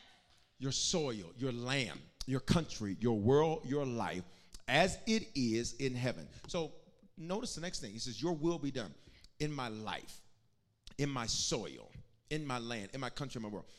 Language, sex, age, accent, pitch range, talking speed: English, male, 40-59, American, 130-190 Hz, 180 wpm